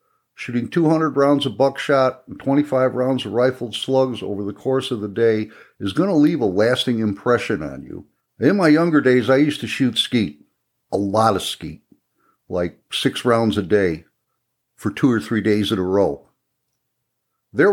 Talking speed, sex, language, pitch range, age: 180 wpm, male, English, 110-145 Hz, 60-79